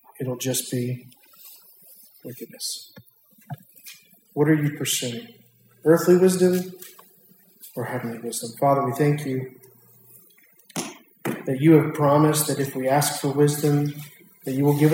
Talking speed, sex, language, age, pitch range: 125 wpm, male, English, 40-59, 145-175 Hz